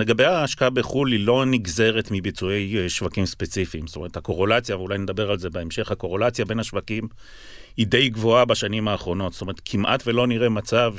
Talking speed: 170 wpm